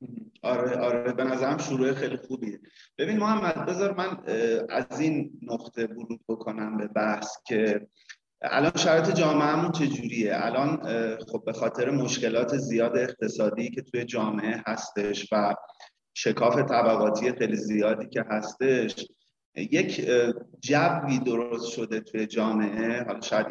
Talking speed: 125 wpm